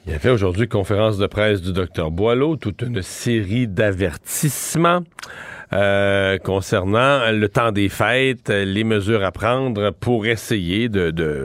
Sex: male